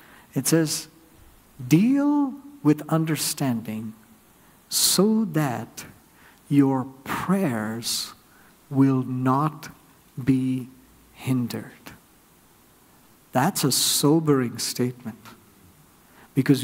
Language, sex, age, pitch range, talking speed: English, male, 60-79, 130-175 Hz, 65 wpm